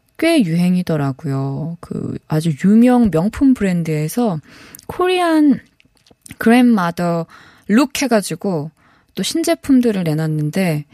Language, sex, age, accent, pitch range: Korean, female, 20-39, native, 160-220 Hz